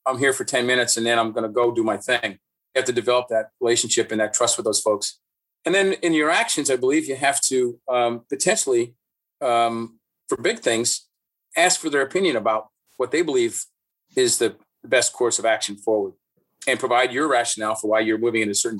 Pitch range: 115-155 Hz